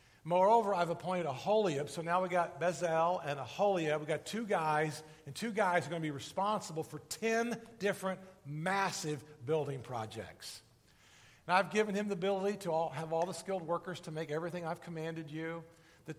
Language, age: English, 50-69